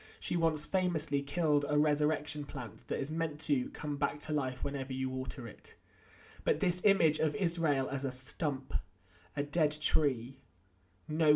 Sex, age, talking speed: male, 30-49, 165 wpm